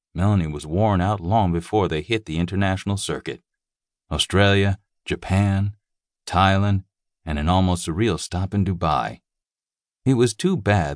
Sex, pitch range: male, 85-105 Hz